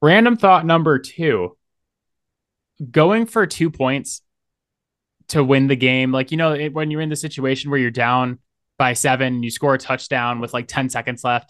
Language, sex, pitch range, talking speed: English, male, 120-155 Hz, 175 wpm